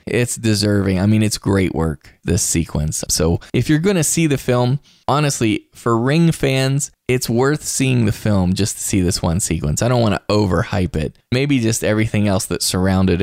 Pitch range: 90-120 Hz